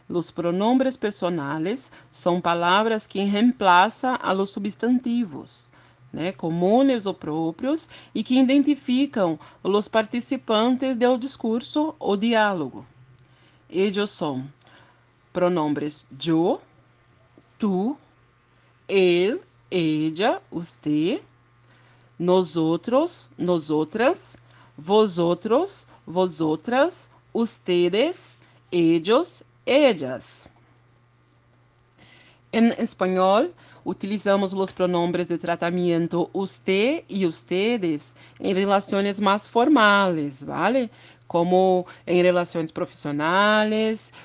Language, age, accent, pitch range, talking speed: Portuguese, 40-59, Brazilian, 165-220 Hz, 85 wpm